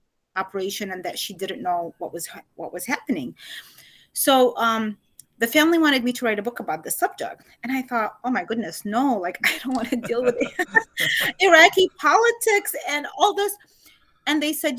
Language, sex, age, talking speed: English, female, 30-49, 185 wpm